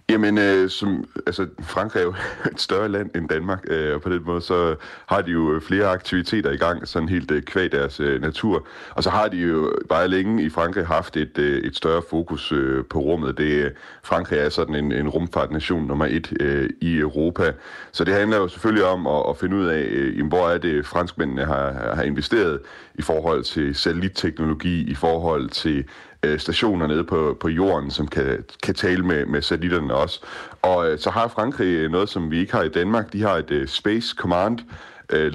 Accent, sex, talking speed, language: native, male, 205 wpm, Danish